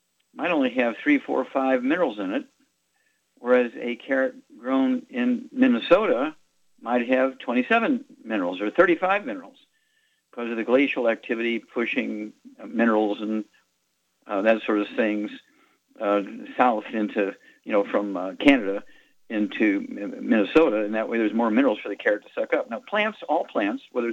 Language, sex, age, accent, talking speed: English, male, 50-69, American, 155 wpm